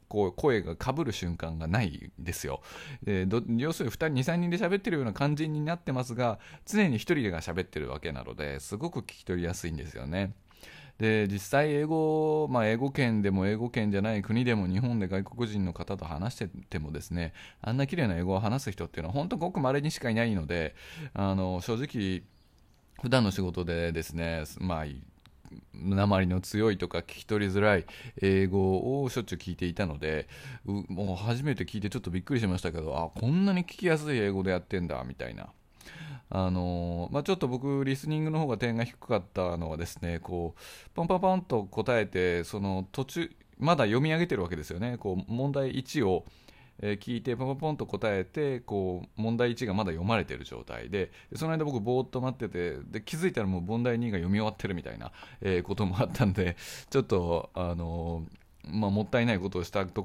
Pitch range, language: 90-125 Hz, Japanese